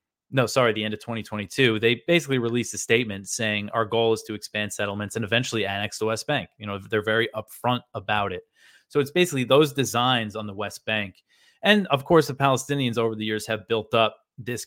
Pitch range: 105-125 Hz